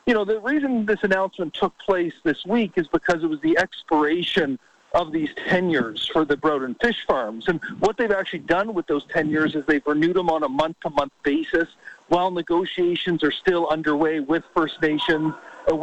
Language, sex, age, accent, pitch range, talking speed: English, male, 40-59, American, 155-190 Hz, 190 wpm